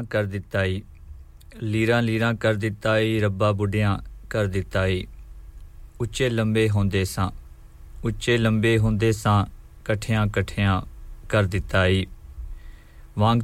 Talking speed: 105 wpm